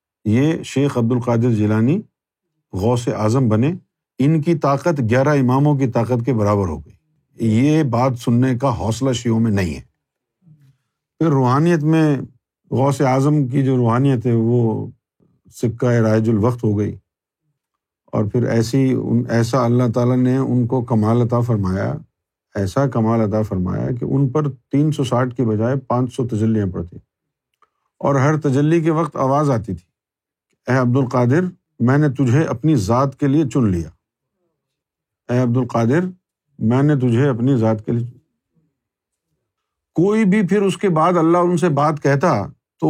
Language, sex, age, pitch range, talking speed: Urdu, male, 50-69, 115-150 Hz, 160 wpm